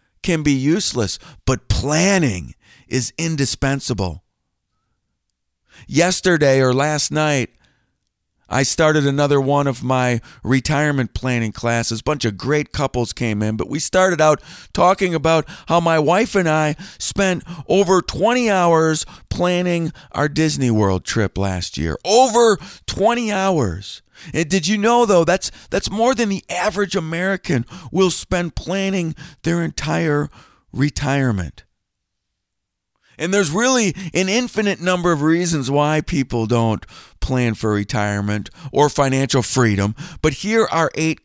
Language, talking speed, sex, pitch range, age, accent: English, 130 wpm, male, 125-180 Hz, 50-69, American